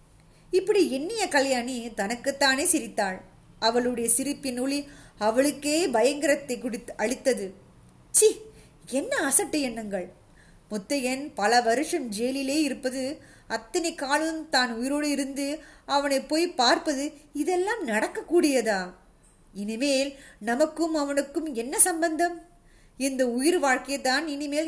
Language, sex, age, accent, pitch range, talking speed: Tamil, female, 20-39, native, 240-305 Hz, 100 wpm